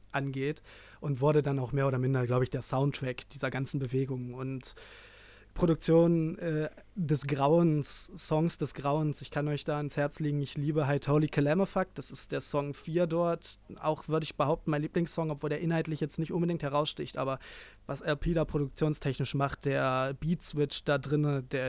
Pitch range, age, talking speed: 135-155 Hz, 30-49, 180 wpm